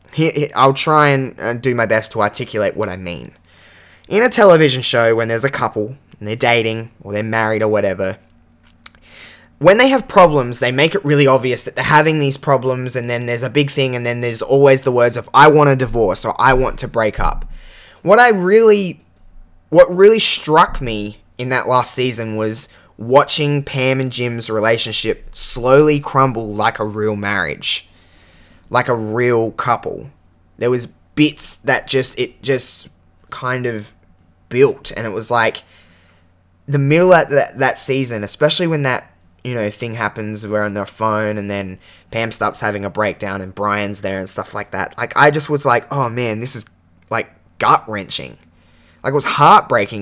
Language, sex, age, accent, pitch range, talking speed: English, male, 10-29, Australian, 100-130 Hz, 180 wpm